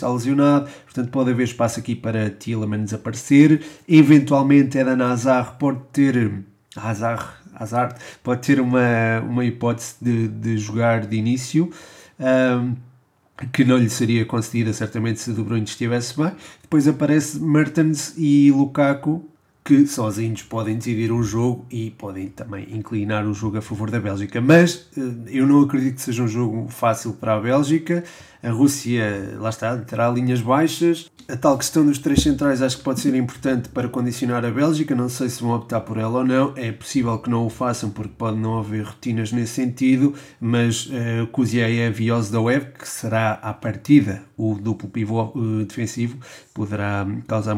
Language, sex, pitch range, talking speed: Portuguese, male, 110-135 Hz, 175 wpm